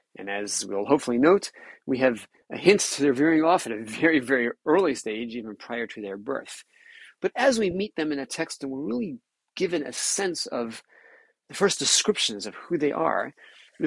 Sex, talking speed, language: male, 205 wpm, English